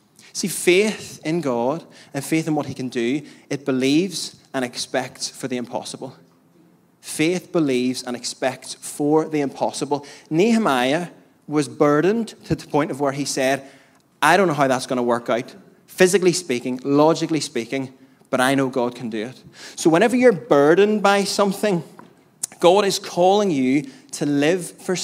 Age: 20-39